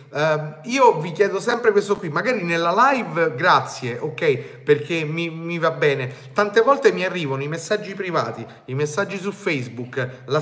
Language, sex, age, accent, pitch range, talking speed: Italian, male, 30-49, native, 145-210 Hz, 160 wpm